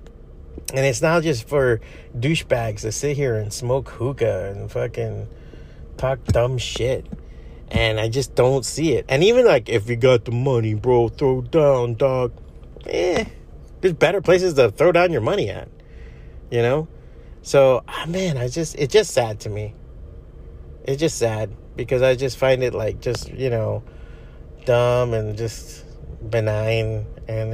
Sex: male